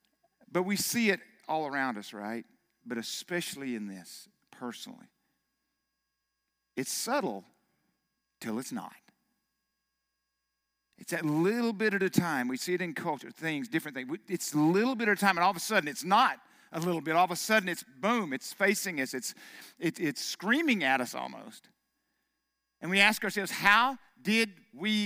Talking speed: 175 wpm